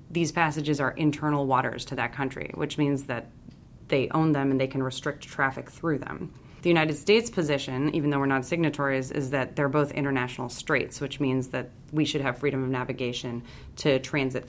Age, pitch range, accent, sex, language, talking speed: 30-49, 130-145 Hz, American, female, English, 195 wpm